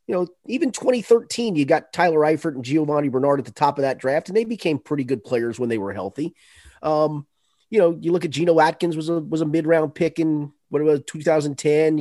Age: 30-49